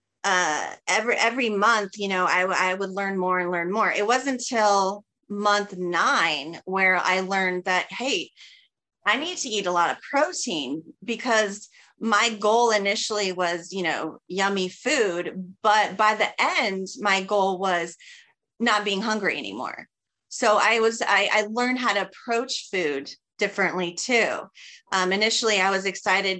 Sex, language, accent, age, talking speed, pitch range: female, English, American, 30-49, 155 wpm, 175-215 Hz